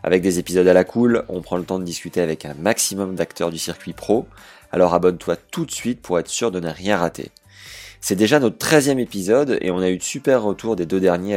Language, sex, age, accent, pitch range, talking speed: French, male, 20-39, French, 85-110 Hz, 245 wpm